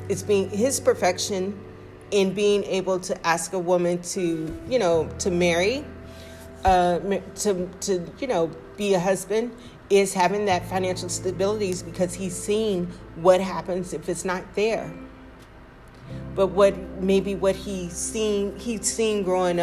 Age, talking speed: 40-59, 145 wpm